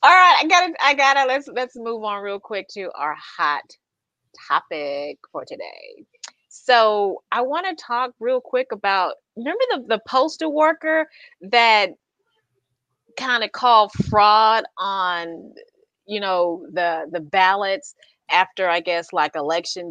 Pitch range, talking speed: 180-265 Hz, 150 wpm